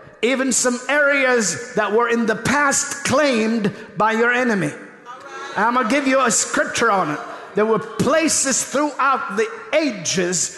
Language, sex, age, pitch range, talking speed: English, male, 50-69, 225-285 Hz, 155 wpm